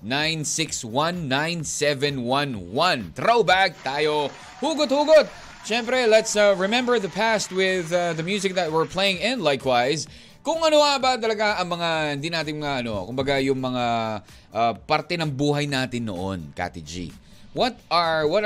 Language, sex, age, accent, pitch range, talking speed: Filipino, male, 20-39, native, 120-175 Hz, 140 wpm